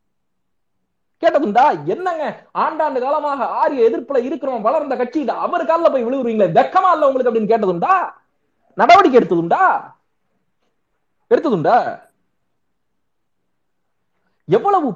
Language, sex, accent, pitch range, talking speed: Tamil, male, native, 220-280 Hz, 65 wpm